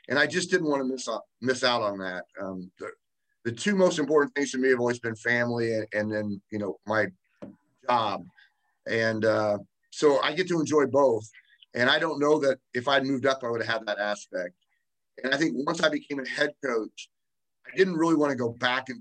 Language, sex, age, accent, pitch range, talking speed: English, male, 30-49, American, 110-145 Hz, 225 wpm